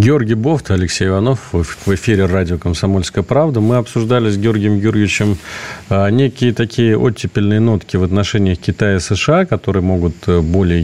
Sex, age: male, 40-59